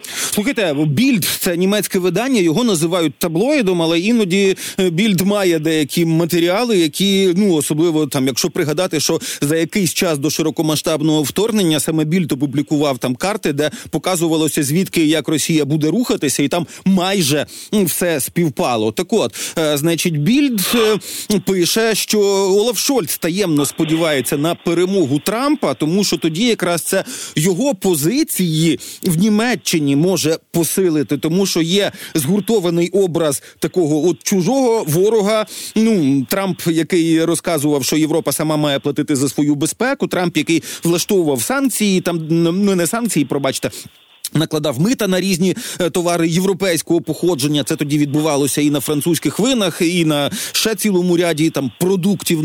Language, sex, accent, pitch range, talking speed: Ukrainian, male, native, 155-195 Hz, 135 wpm